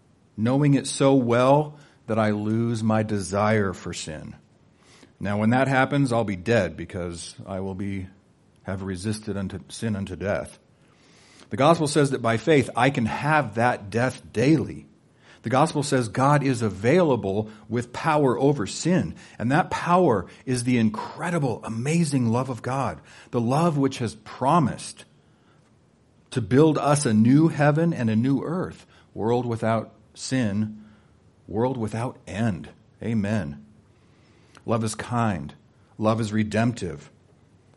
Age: 50-69